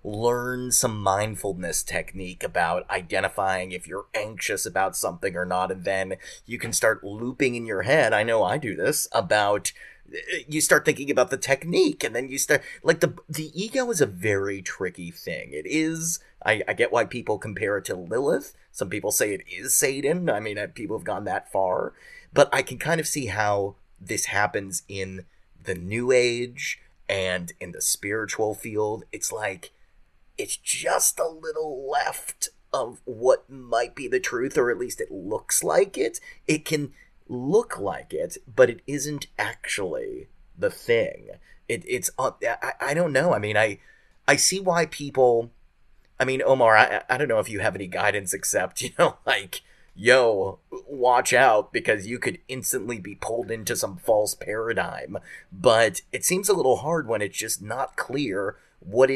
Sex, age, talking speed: male, 30-49, 180 wpm